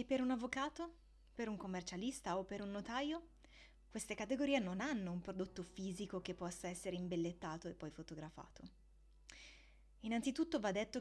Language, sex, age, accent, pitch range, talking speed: Italian, female, 20-39, native, 175-235 Hz, 145 wpm